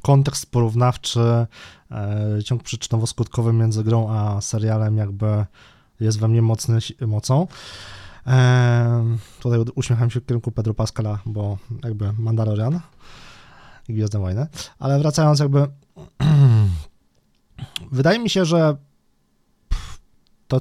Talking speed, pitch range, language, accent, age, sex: 110 wpm, 110-135 Hz, Polish, native, 20-39, male